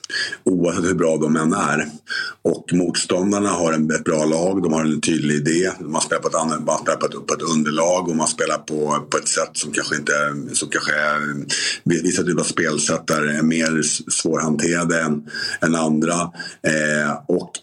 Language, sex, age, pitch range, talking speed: Swedish, male, 50-69, 75-85 Hz, 155 wpm